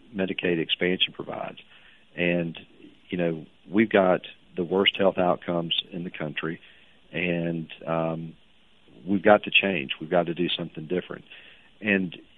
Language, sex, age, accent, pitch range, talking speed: English, male, 50-69, American, 80-90 Hz, 135 wpm